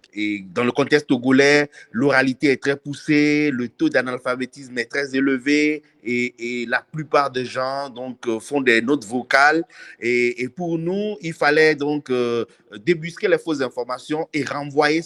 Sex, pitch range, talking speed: male, 120-150 Hz, 160 wpm